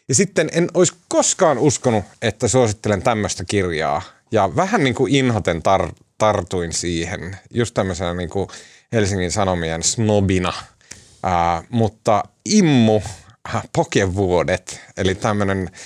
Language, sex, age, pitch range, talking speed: Finnish, male, 30-49, 95-130 Hz, 120 wpm